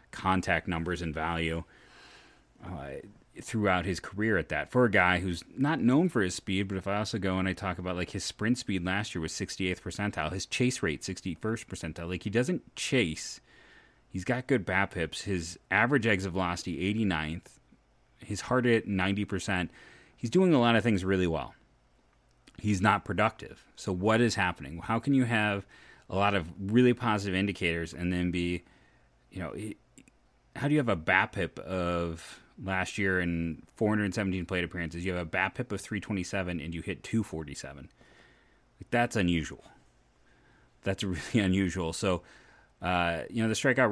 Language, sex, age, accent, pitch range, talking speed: English, male, 30-49, American, 90-110 Hz, 170 wpm